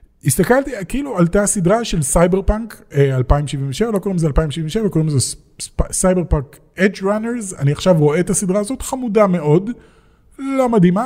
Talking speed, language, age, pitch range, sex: 170 wpm, Hebrew, 30-49, 130-180 Hz, male